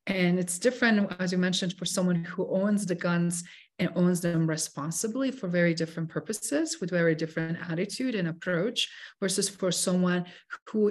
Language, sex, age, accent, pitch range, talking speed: English, female, 40-59, Canadian, 170-200 Hz, 165 wpm